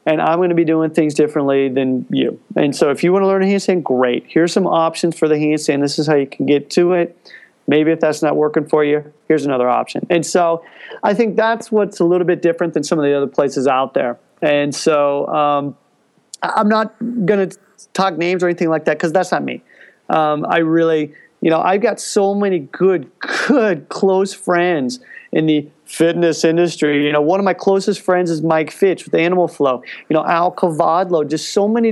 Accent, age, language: American, 40-59, English